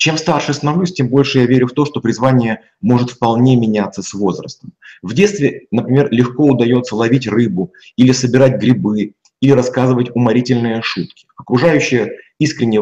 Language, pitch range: Russian, 125-160 Hz